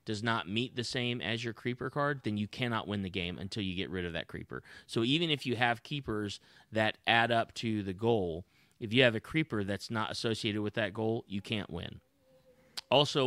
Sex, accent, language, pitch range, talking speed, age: male, American, English, 100-125 Hz, 220 wpm, 30-49